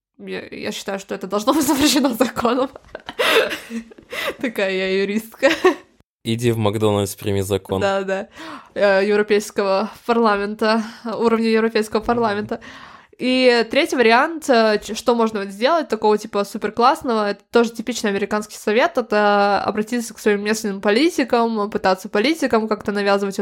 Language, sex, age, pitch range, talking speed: Russian, female, 20-39, 210-280 Hz, 125 wpm